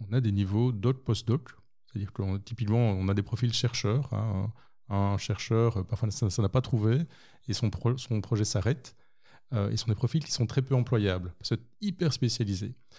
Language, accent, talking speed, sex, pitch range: Dutch, French, 205 wpm, male, 105-125 Hz